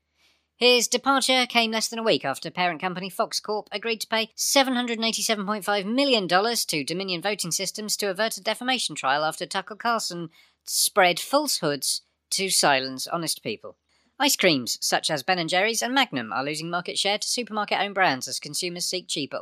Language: English